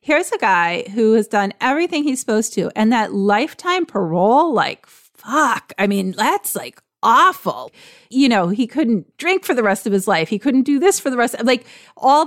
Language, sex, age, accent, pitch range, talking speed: English, female, 30-49, American, 195-255 Hz, 205 wpm